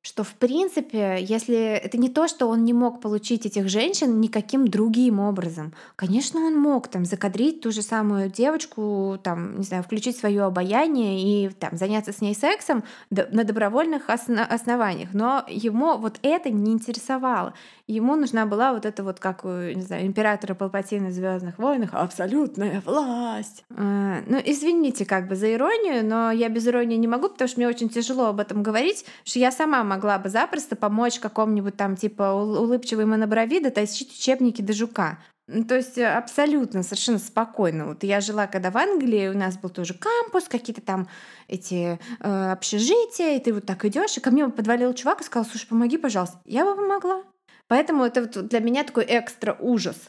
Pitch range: 205-255 Hz